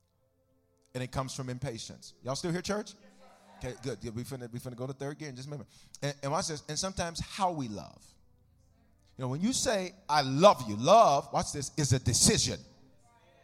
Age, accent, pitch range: 40-59, American, 125-190 Hz